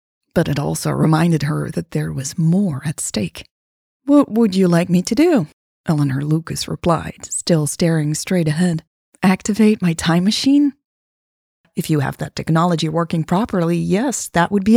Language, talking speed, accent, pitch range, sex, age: English, 165 wpm, American, 155-195 Hz, female, 30-49